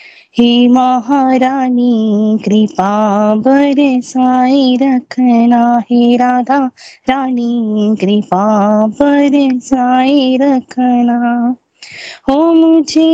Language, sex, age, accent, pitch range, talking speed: Hindi, female, 20-39, native, 240-295 Hz, 60 wpm